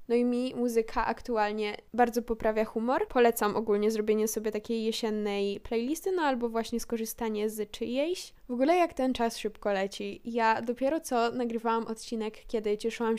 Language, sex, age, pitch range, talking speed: Polish, female, 10-29, 220-245 Hz, 160 wpm